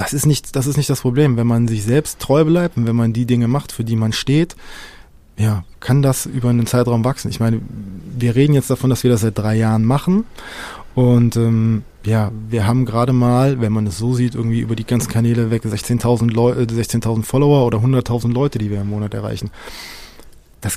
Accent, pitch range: German, 115-135 Hz